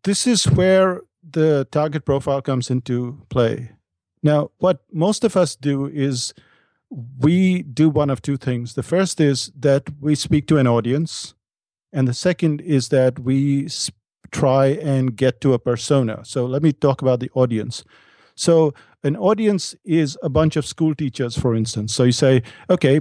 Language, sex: English, male